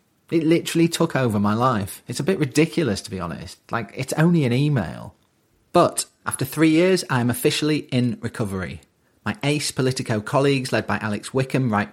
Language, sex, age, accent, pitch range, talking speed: English, male, 30-49, British, 100-130 Hz, 180 wpm